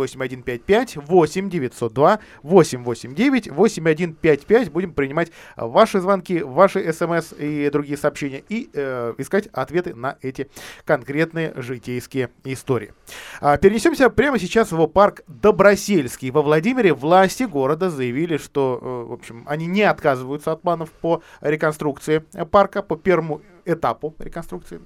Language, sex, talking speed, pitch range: Russian, male, 110 wpm, 140-190 Hz